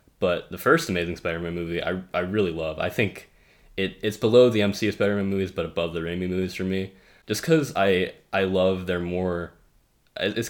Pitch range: 80-95 Hz